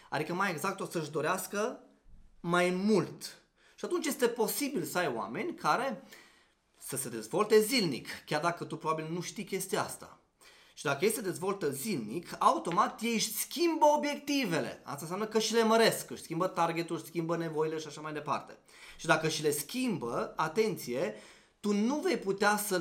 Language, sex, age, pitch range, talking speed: Romanian, male, 20-39, 140-205 Hz, 175 wpm